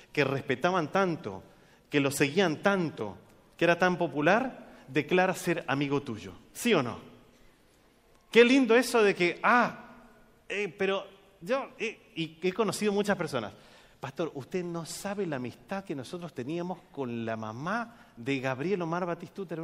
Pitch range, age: 130-190 Hz, 30-49